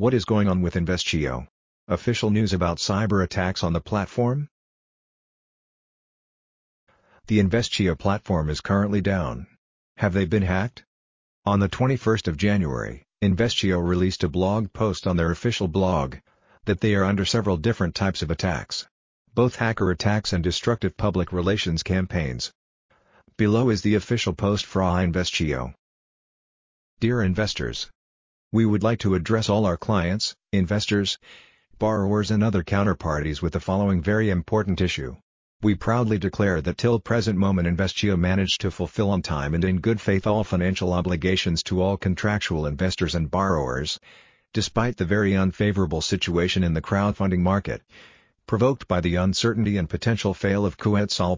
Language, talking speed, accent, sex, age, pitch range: English, 150 wpm, American, male, 50-69, 90-105 Hz